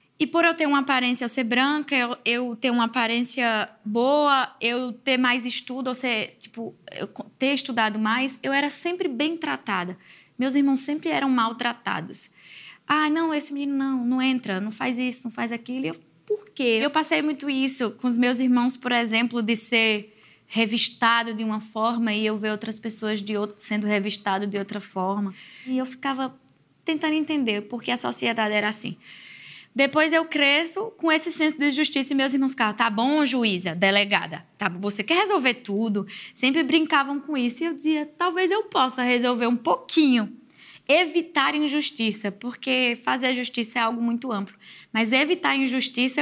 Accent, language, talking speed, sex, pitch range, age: Brazilian, Portuguese, 180 wpm, female, 220-280 Hz, 10-29